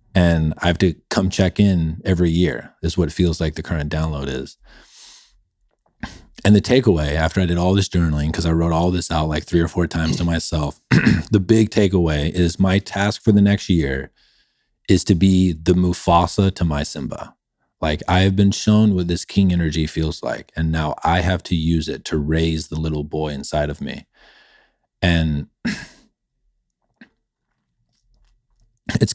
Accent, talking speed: American, 175 wpm